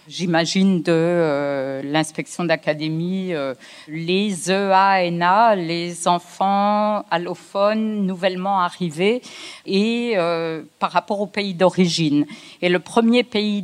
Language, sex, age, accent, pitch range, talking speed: French, female, 50-69, French, 175-210 Hz, 105 wpm